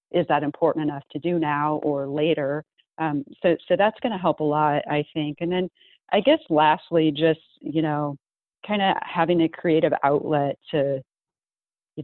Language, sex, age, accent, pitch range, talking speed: English, female, 40-59, American, 145-165 Hz, 180 wpm